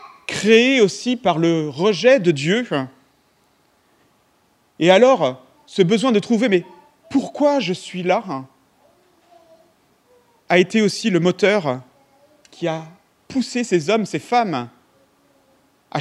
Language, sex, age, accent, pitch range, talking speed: French, male, 40-59, French, 160-235 Hz, 125 wpm